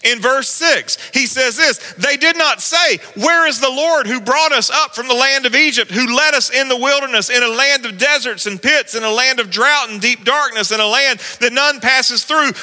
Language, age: English, 40-59